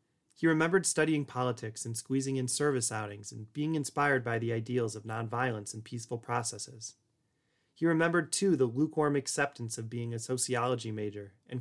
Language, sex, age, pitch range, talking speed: English, male, 30-49, 115-140 Hz, 165 wpm